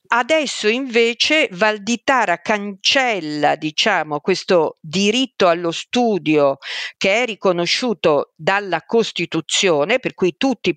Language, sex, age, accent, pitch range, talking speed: Italian, female, 50-69, native, 165-240 Hz, 95 wpm